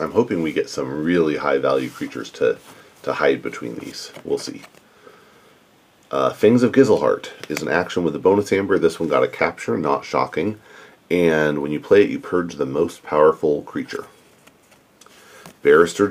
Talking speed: 170 wpm